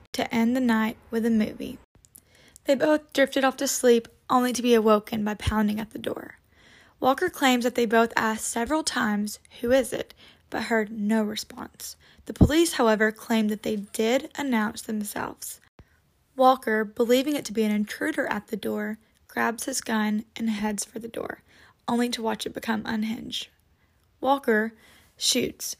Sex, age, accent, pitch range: female, 10-29, American, 220-255 Hz